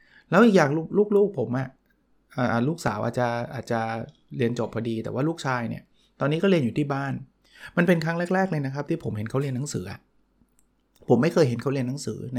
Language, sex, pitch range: Thai, male, 120-155 Hz